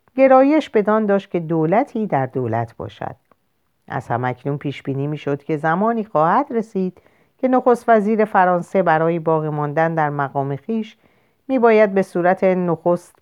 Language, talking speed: Persian, 150 wpm